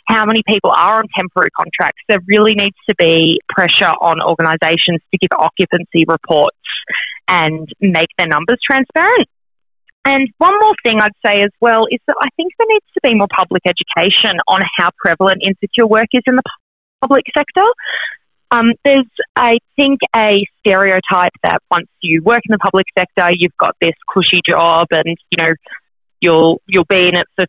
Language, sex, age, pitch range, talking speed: English, female, 30-49, 175-225 Hz, 175 wpm